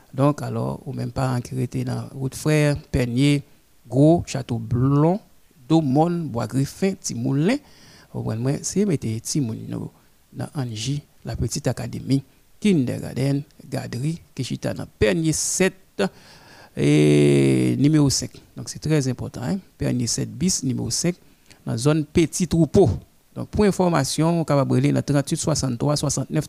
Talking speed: 140 wpm